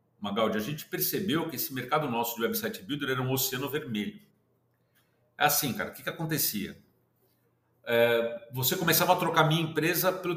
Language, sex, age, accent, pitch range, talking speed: Portuguese, male, 50-69, Brazilian, 125-185 Hz, 170 wpm